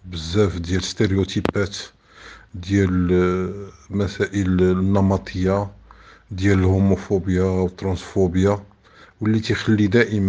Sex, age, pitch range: male, 50-69, 90-105 Hz